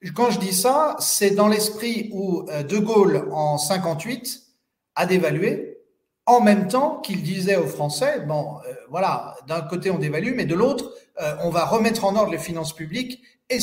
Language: French